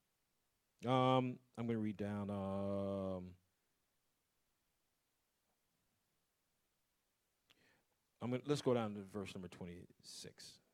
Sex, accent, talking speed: male, American, 95 wpm